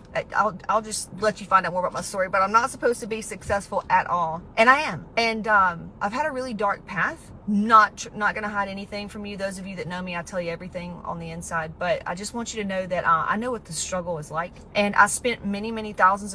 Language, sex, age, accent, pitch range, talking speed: English, female, 30-49, American, 180-225 Hz, 270 wpm